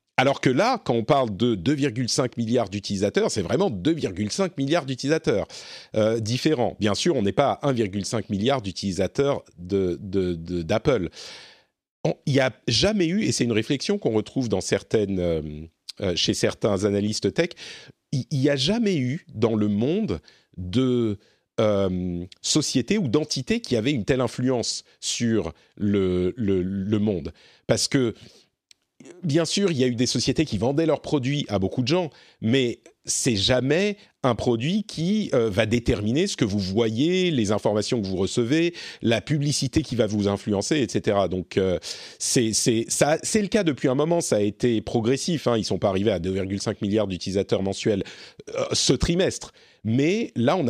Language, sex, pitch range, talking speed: French, male, 105-145 Hz, 175 wpm